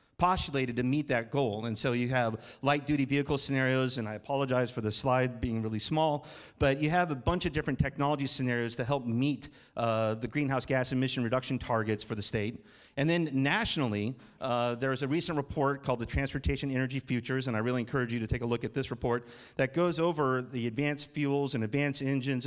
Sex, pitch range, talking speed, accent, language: male, 125-150 Hz, 210 wpm, American, English